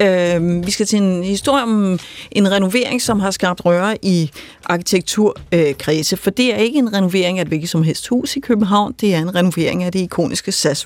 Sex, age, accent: female, 30-49, native